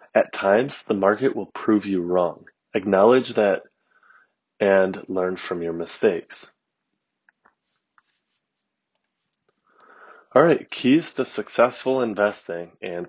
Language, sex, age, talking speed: English, male, 20-39, 100 wpm